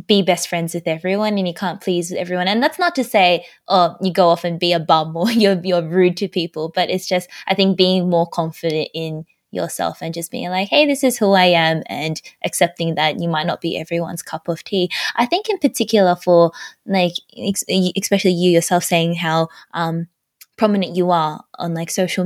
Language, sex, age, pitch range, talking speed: English, female, 10-29, 170-215 Hz, 215 wpm